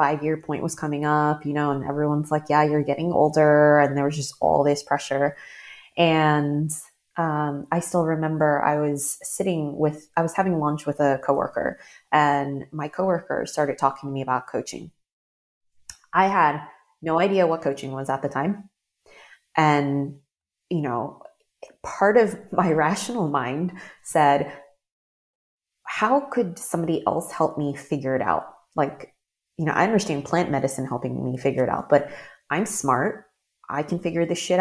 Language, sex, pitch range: English, female, 140-170 Hz